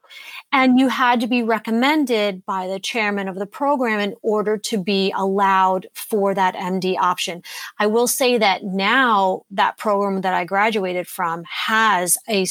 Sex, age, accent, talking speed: female, 30-49, American, 165 wpm